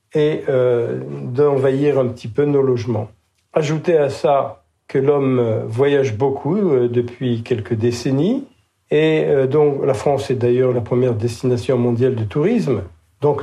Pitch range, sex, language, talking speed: 130-185 Hz, male, French, 145 wpm